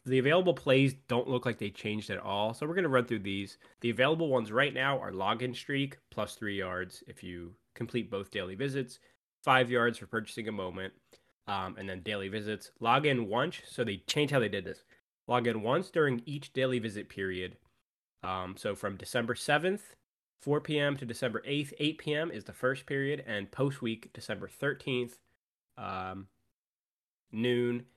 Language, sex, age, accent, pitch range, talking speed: English, male, 20-39, American, 100-135 Hz, 180 wpm